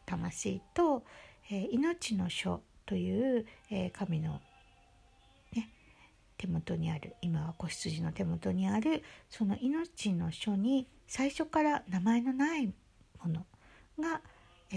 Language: Japanese